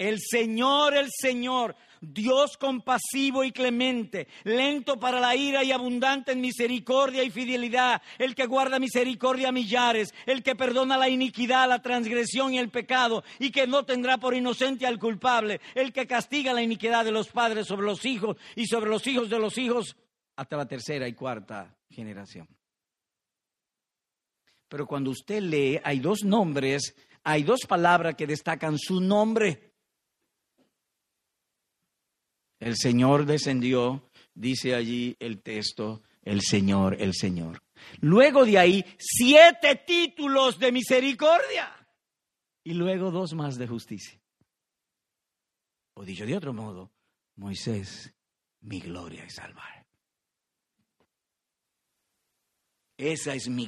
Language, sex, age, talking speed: Spanish, male, 50-69, 130 wpm